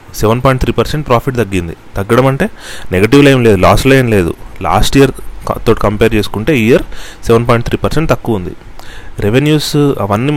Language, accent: Telugu, native